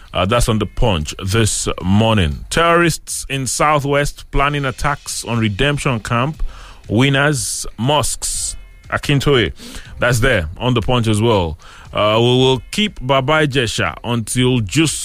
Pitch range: 100-140 Hz